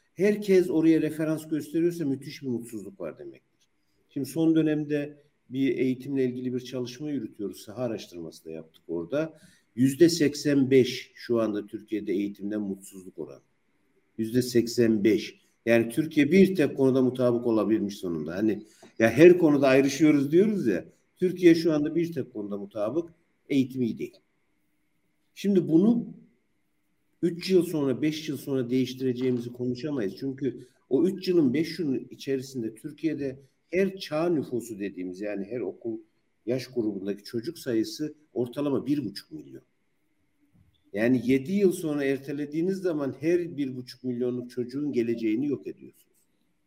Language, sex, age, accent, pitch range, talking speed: Turkish, male, 50-69, native, 125-160 Hz, 130 wpm